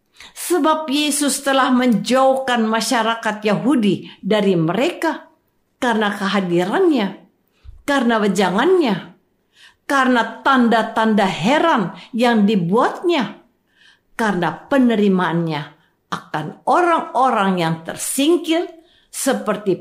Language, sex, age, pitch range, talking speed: Indonesian, female, 50-69, 195-280 Hz, 75 wpm